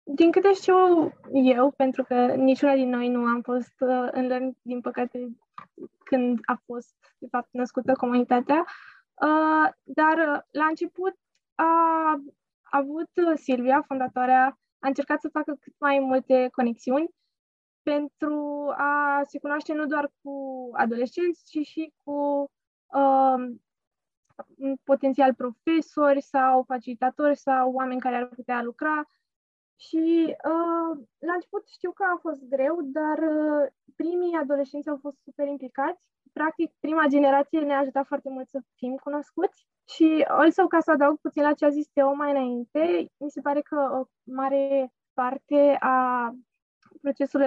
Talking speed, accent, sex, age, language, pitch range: 145 wpm, native, female, 20-39, Romanian, 260-305 Hz